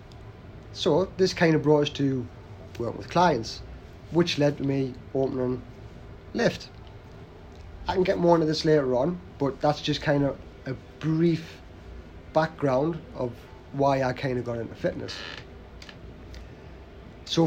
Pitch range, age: 115-155 Hz, 30-49